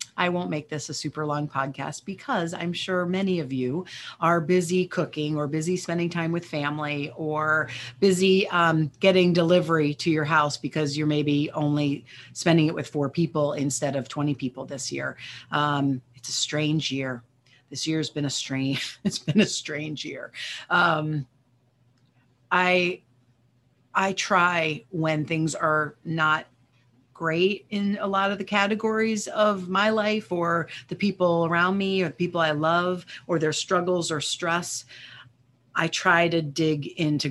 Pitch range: 145-175 Hz